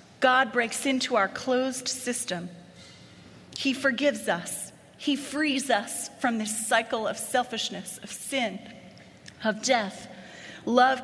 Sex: female